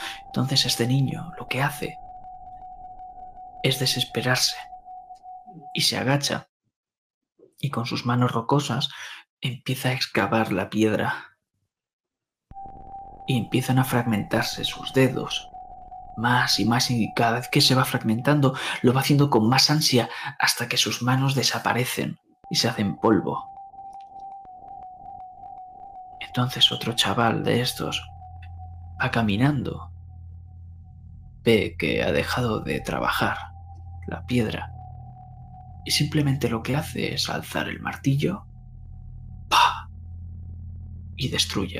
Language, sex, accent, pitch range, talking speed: Spanish, male, Spanish, 85-140 Hz, 115 wpm